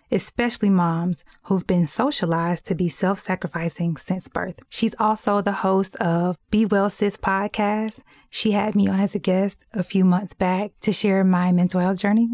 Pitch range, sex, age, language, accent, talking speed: 185-220 Hz, female, 20-39, English, American, 175 wpm